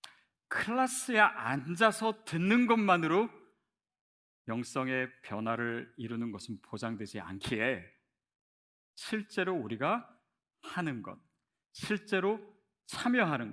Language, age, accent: Korean, 40-59, native